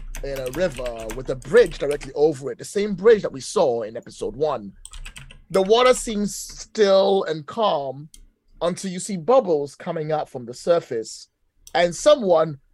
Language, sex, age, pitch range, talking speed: English, male, 30-49, 150-210 Hz, 165 wpm